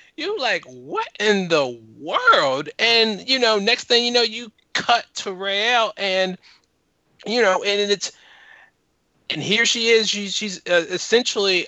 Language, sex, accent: English, male, American